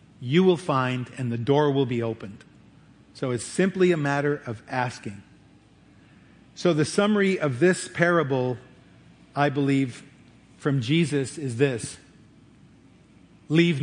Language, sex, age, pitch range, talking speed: English, male, 50-69, 125-160 Hz, 125 wpm